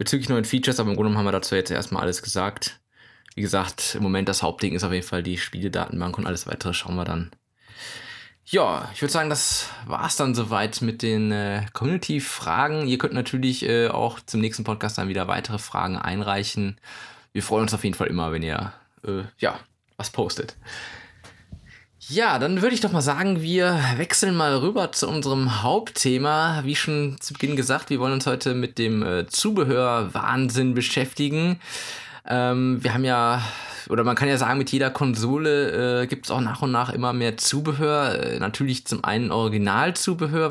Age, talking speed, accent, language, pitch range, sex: 20-39, 180 wpm, German, German, 105-140 Hz, male